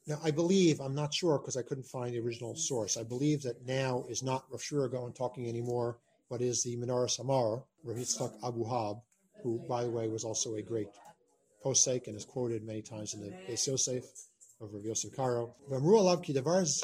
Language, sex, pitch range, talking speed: English, male, 125-155 Hz, 180 wpm